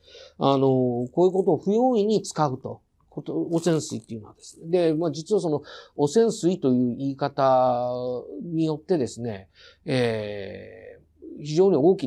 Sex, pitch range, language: male, 120-190 Hz, Japanese